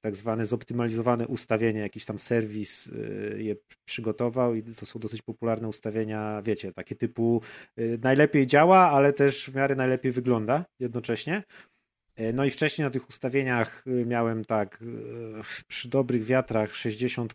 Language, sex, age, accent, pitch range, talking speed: Polish, male, 30-49, native, 110-130 Hz, 135 wpm